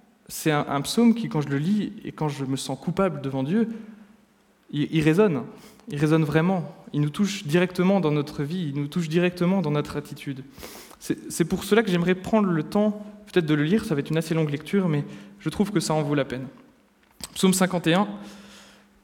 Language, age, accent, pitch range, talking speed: French, 20-39, French, 150-195 Hz, 210 wpm